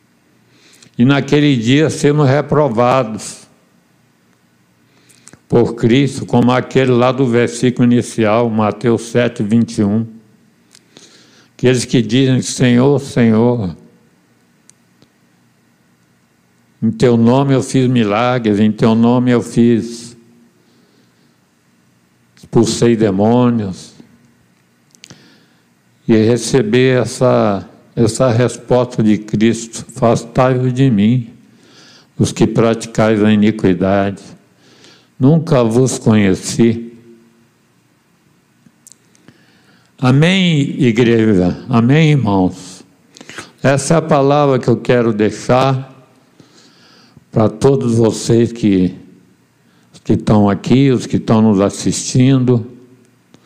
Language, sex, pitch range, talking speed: Portuguese, male, 105-125 Hz, 85 wpm